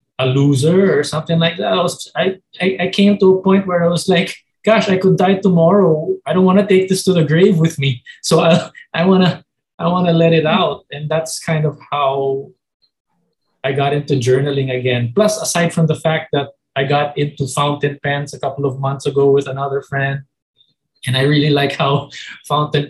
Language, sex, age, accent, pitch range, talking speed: English, male, 20-39, Filipino, 135-160 Hz, 210 wpm